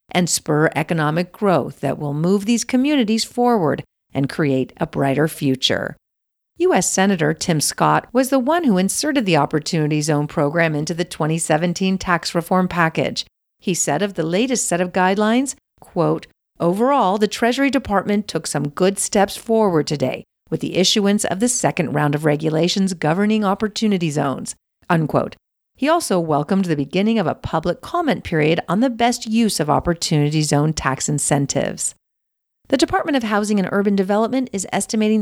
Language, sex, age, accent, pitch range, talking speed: English, female, 50-69, American, 155-215 Hz, 160 wpm